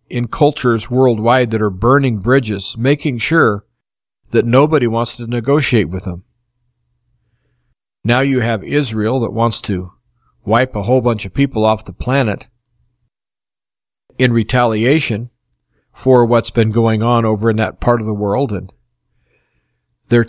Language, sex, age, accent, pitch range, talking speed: English, male, 50-69, American, 110-125 Hz, 140 wpm